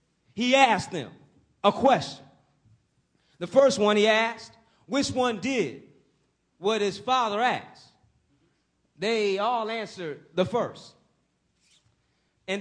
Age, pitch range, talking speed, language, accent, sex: 30-49, 215-275 Hz, 110 wpm, English, American, male